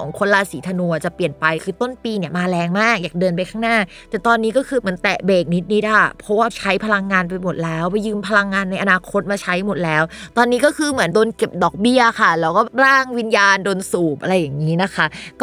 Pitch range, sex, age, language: 180-235 Hz, female, 20-39, Thai